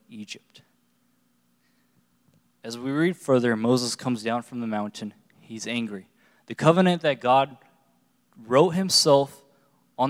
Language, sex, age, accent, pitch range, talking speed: English, male, 20-39, American, 120-150 Hz, 120 wpm